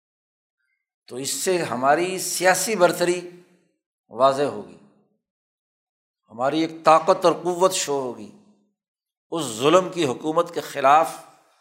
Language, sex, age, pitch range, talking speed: Urdu, male, 60-79, 145-185 Hz, 110 wpm